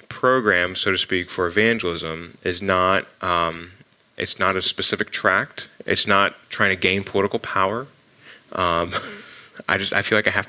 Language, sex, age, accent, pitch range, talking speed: English, male, 30-49, American, 95-115 Hz, 155 wpm